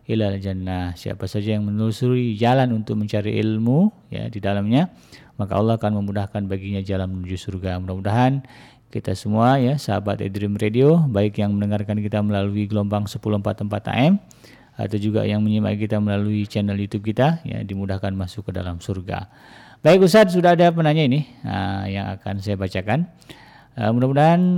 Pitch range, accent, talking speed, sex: 105-135 Hz, native, 155 wpm, male